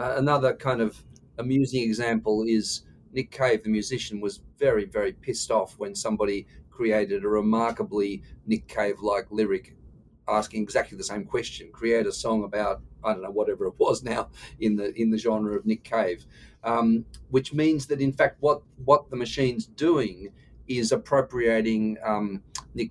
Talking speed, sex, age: 160 wpm, male, 40-59